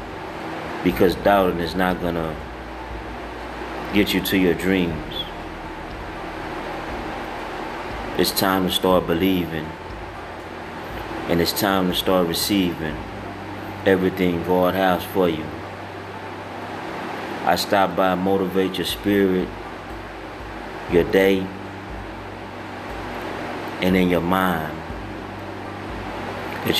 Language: English